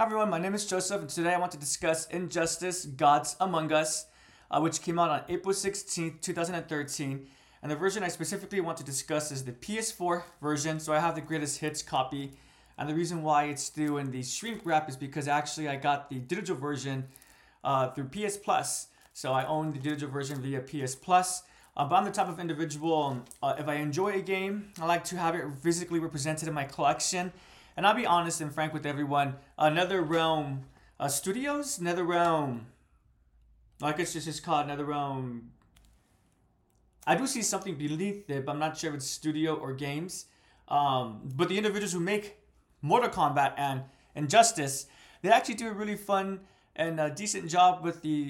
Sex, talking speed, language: male, 195 wpm, English